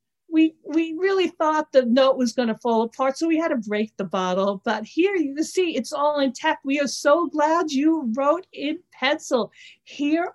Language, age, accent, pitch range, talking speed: English, 50-69, American, 210-285 Hz, 195 wpm